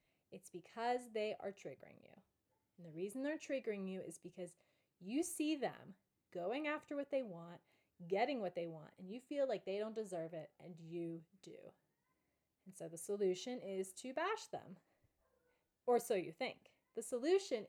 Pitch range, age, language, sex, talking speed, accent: 195-290 Hz, 30-49, English, female, 175 wpm, American